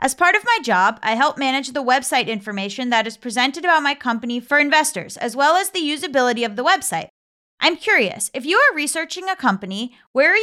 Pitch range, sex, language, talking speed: 210-280 Hz, female, English, 215 wpm